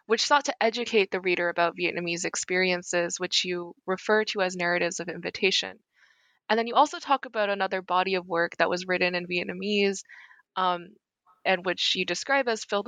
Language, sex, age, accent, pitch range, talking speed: English, female, 20-39, American, 180-210 Hz, 180 wpm